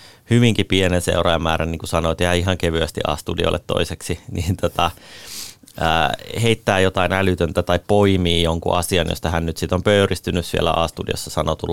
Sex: male